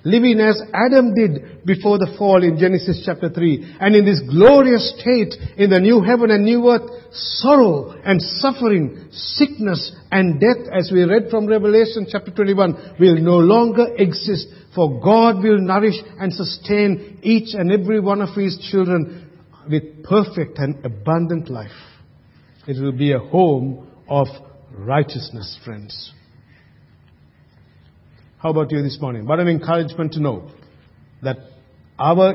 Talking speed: 145 wpm